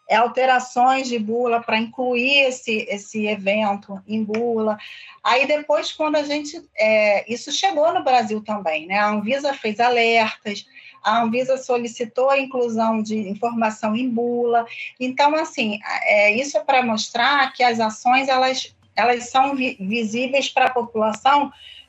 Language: Portuguese